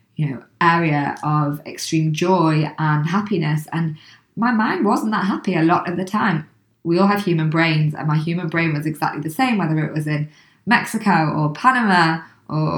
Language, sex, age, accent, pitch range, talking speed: English, female, 20-39, British, 155-180 Hz, 190 wpm